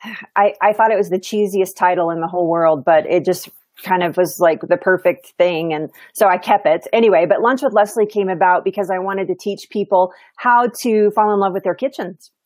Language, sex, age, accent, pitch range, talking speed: English, female, 30-49, American, 180-220 Hz, 230 wpm